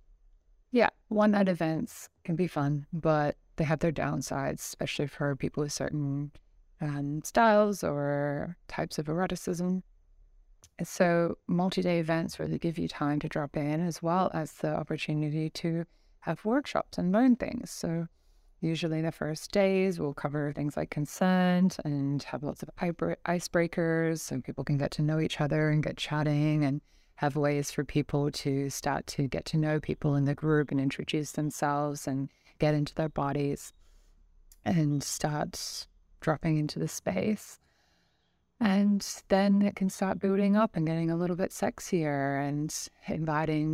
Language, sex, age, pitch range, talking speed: English, female, 20-39, 145-170 Hz, 155 wpm